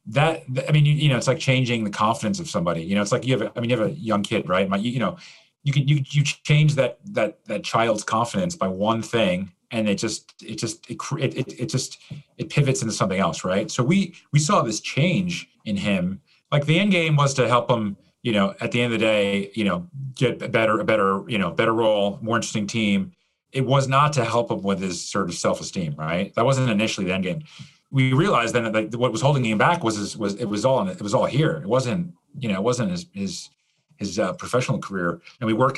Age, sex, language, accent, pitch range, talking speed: 30-49, male, English, American, 115-155 Hz, 250 wpm